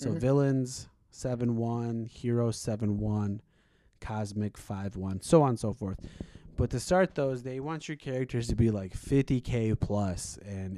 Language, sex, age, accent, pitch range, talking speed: English, male, 20-39, American, 100-125 Hz, 145 wpm